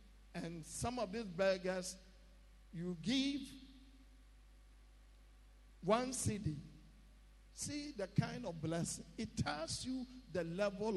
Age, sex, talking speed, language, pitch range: 50-69, male, 105 wpm, English, 160-205 Hz